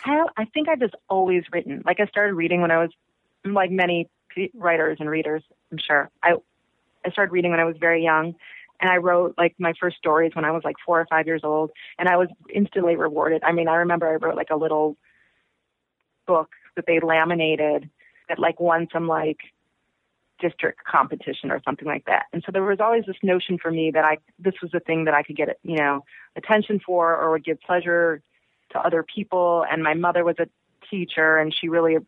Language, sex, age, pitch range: English, female, 30-49, 155-185 Hz